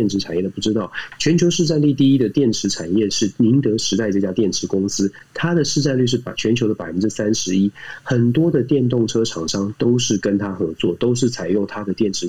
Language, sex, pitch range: Chinese, male, 100-140 Hz